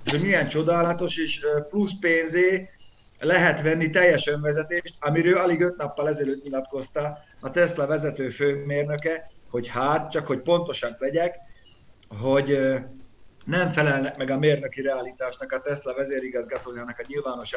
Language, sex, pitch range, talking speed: Hungarian, male, 130-160 Hz, 130 wpm